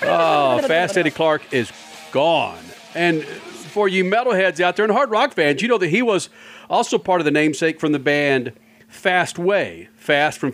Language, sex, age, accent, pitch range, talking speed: English, male, 40-59, American, 120-170 Hz, 190 wpm